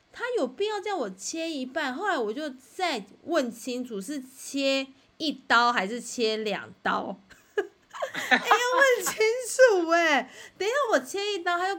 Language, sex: Chinese, female